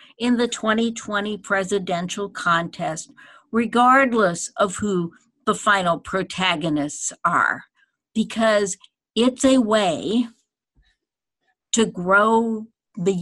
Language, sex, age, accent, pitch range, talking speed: English, female, 60-79, American, 185-225 Hz, 85 wpm